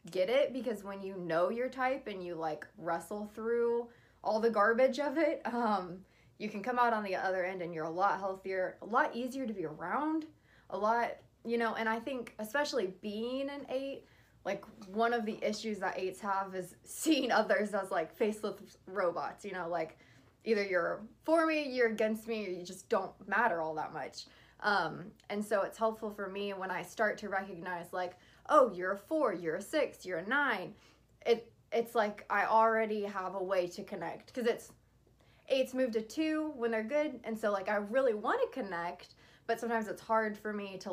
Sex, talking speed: female, 205 wpm